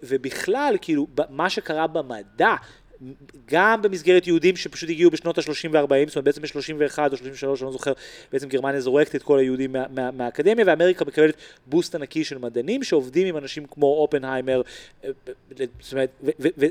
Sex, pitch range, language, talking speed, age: male, 140-210 Hz, Hebrew, 160 wpm, 30-49